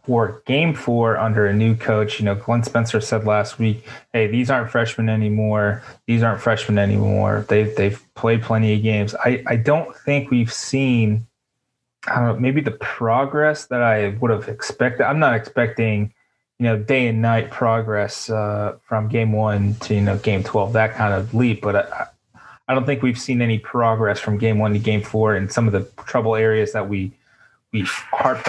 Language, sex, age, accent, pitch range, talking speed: English, male, 20-39, American, 105-115 Hz, 195 wpm